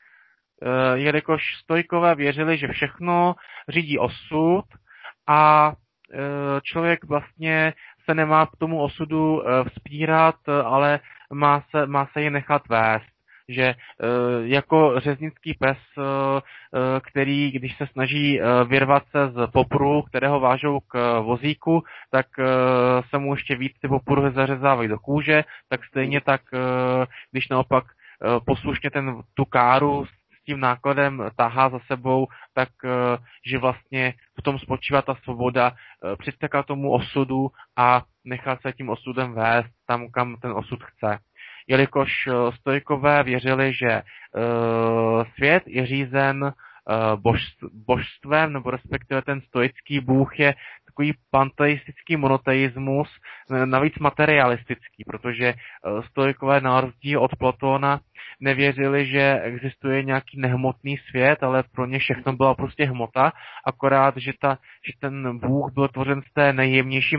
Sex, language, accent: male, Czech, native